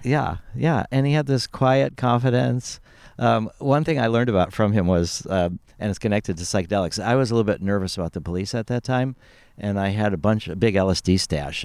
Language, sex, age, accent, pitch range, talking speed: English, male, 50-69, American, 90-115 Hz, 225 wpm